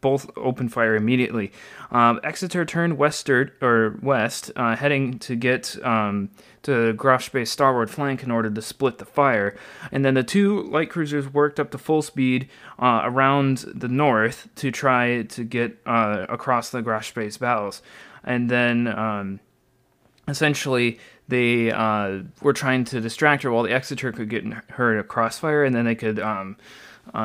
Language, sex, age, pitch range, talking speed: English, male, 20-39, 115-145 Hz, 160 wpm